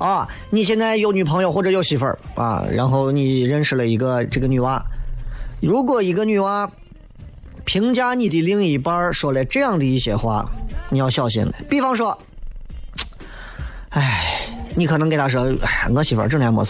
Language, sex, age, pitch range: Chinese, male, 30-49, 130-210 Hz